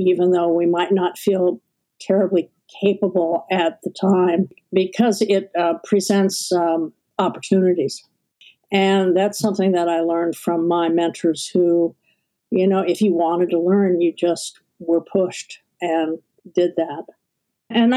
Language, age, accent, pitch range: English, 60-79, American, 165-200 Hz